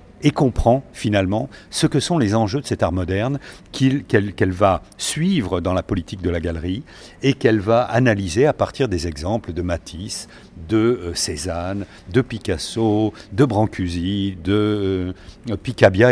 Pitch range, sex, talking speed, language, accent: 95-125 Hz, male, 155 wpm, French, French